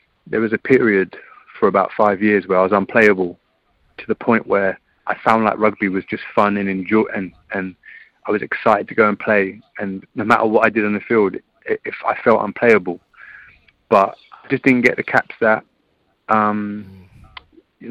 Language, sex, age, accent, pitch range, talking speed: English, male, 30-49, British, 95-110 Hz, 195 wpm